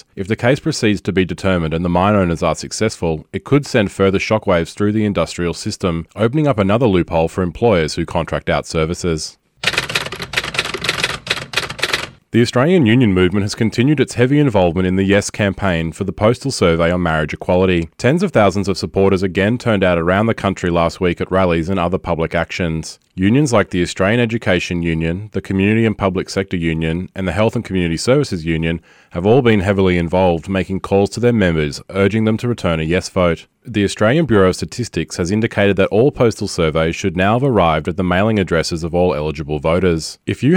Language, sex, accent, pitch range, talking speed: English, male, Australian, 85-110 Hz, 195 wpm